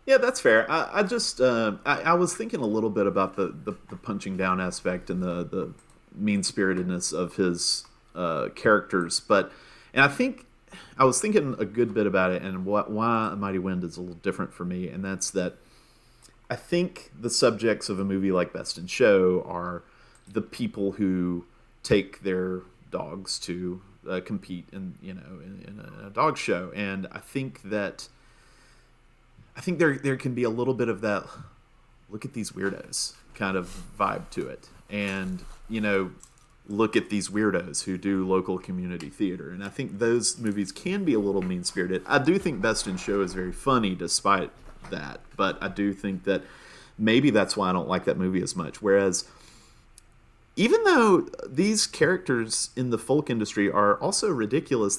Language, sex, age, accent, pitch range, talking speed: English, male, 40-59, American, 95-120 Hz, 180 wpm